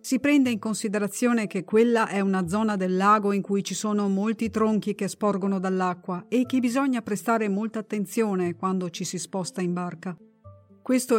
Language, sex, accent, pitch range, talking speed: Italian, female, native, 190-220 Hz, 175 wpm